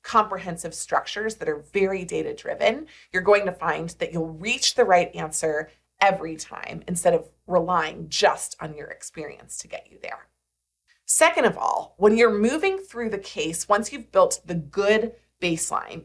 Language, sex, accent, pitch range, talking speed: English, female, American, 170-240 Hz, 165 wpm